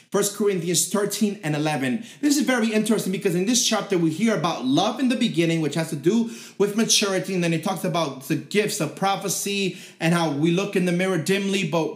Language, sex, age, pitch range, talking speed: English, male, 30-49, 170-220 Hz, 220 wpm